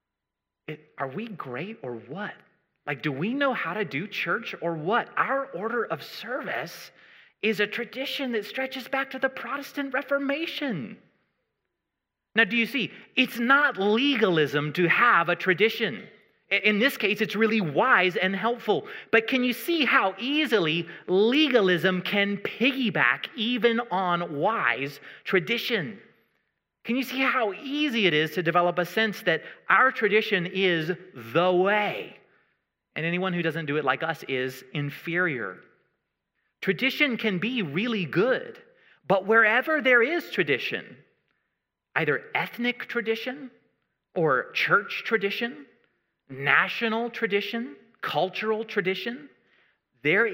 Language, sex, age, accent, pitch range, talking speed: English, male, 30-49, American, 180-245 Hz, 130 wpm